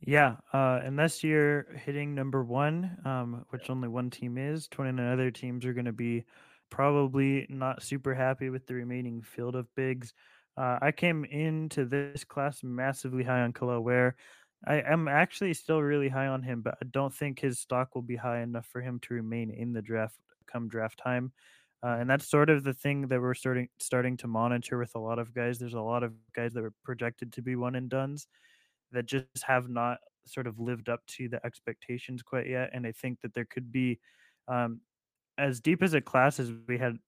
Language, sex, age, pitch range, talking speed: English, male, 20-39, 120-135 Hz, 205 wpm